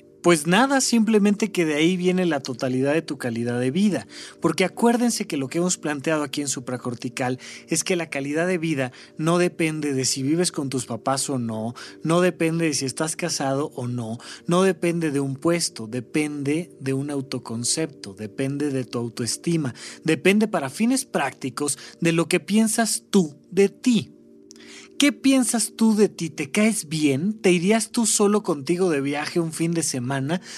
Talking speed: 180 wpm